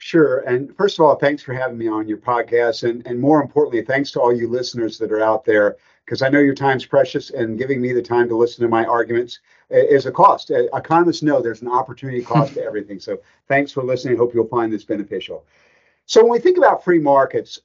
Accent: American